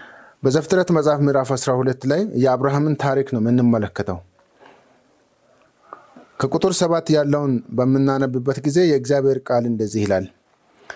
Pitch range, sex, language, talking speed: 125-160 Hz, male, Amharic, 105 wpm